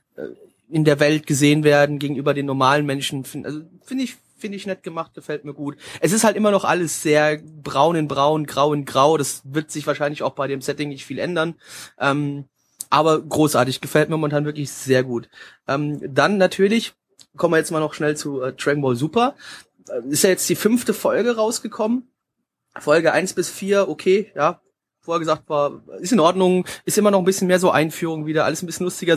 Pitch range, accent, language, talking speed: 150-205 Hz, German, German, 200 wpm